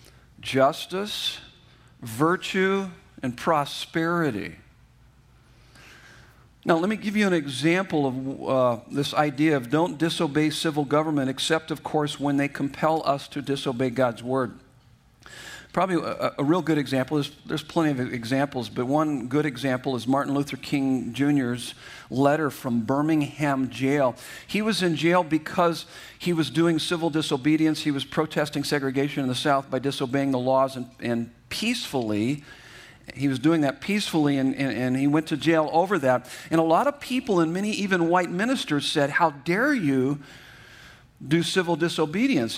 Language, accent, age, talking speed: English, American, 50-69, 155 wpm